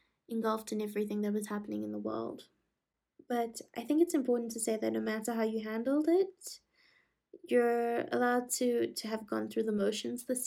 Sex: female